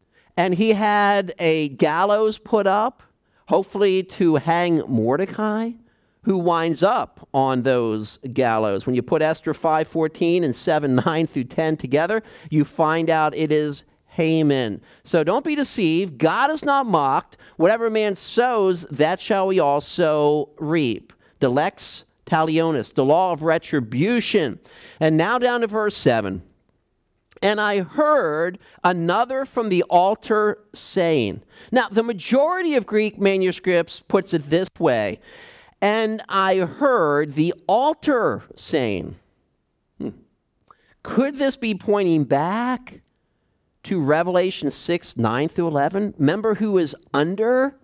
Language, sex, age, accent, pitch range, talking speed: English, male, 50-69, American, 155-220 Hz, 120 wpm